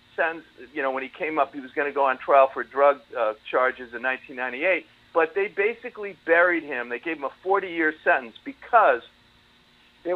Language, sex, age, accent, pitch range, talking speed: English, male, 50-69, American, 140-190 Hz, 200 wpm